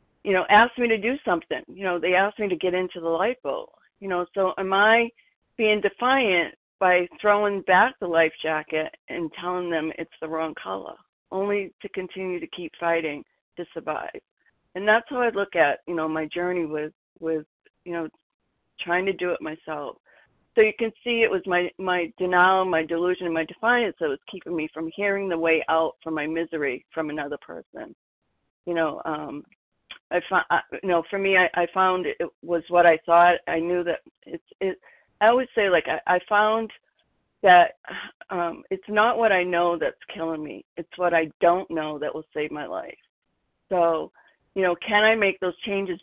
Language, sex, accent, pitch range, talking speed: English, female, American, 165-205 Hz, 195 wpm